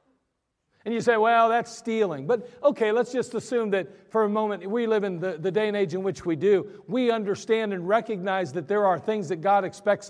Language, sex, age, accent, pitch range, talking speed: English, male, 40-59, American, 130-200 Hz, 225 wpm